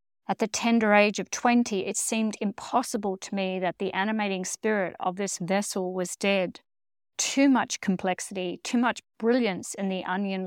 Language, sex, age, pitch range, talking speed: English, female, 50-69, 185-215 Hz, 165 wpm